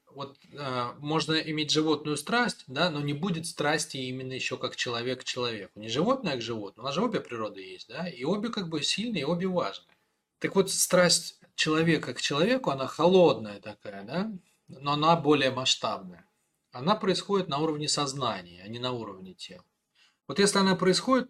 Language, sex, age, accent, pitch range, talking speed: Russian, male, 20-39, native, 125-175 Hz, 180 wpm